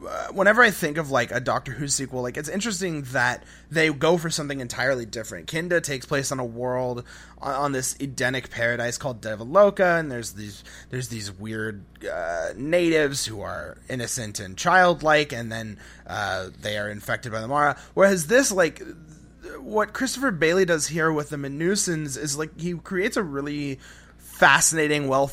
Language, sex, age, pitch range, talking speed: English, male, 30-49, 120-155 Hz, 180 wpm